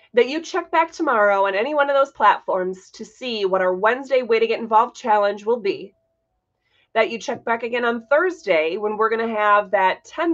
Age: 30-49